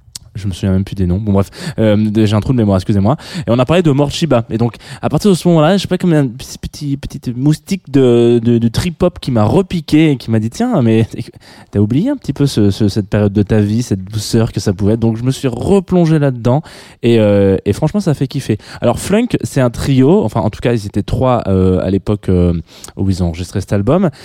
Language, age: French, 20-39